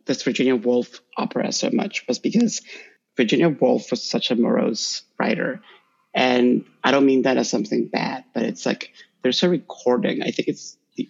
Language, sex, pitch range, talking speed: English, male, 125-140 Hz, 180 wpm